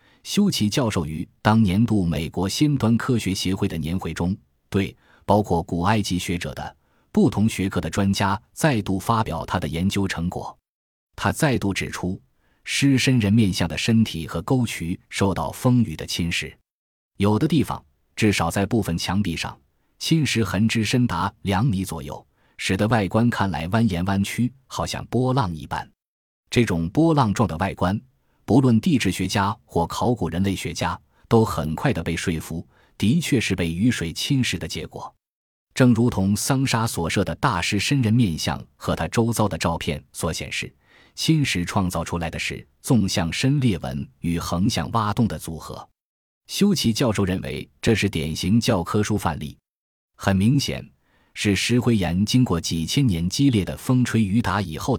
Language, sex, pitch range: Chinese, male, 85-115 Hz